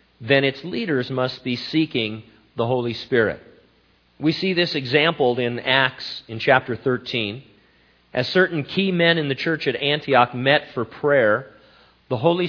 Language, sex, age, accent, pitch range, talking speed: English, male, 40-59, American, 110-140 Hz, 155 wpm